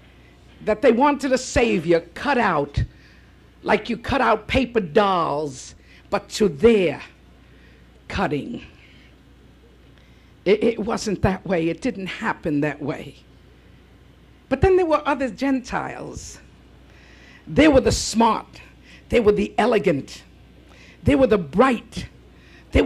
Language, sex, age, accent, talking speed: English, female, 50-69, American, 120 wpm